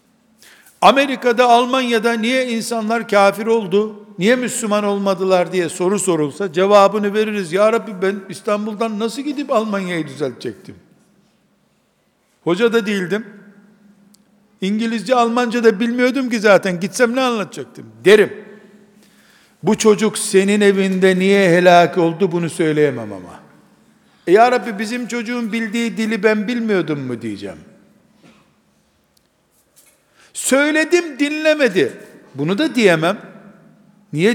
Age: 60-79